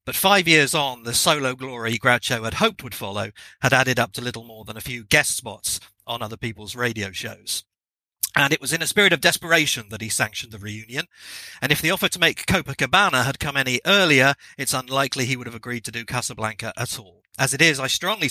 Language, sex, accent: English, male, British